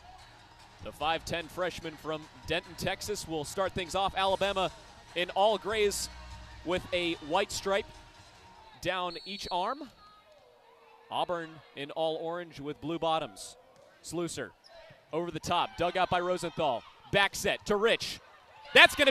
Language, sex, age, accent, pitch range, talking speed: English, male, 30-49, American, 165-205 Hz, 130 wpm